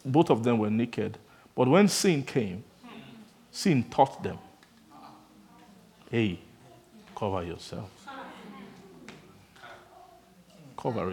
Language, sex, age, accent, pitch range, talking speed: English, male, 50-69, Nigerian, 115-175 Hz, 85 wpm